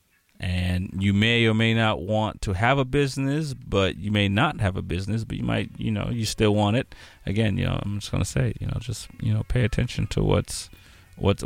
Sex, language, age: male, English, 30-49